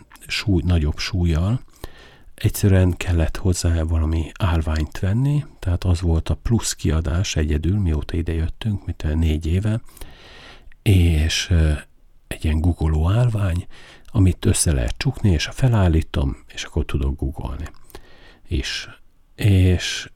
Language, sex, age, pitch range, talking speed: Hungarian, male, 50-69, 80-100 Hz, 120 wpm